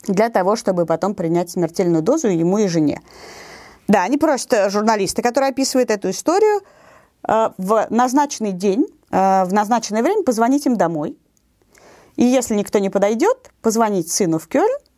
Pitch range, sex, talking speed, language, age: 180-275 Hz, female, 145 wpm, Russian, 30-49